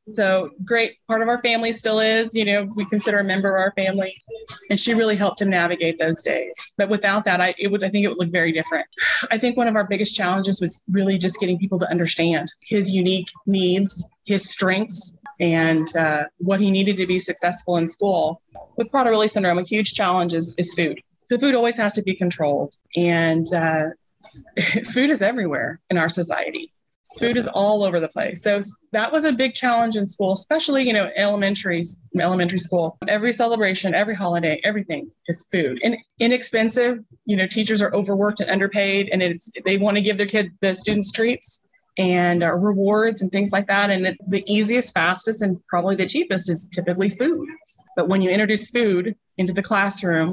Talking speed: 195 wpm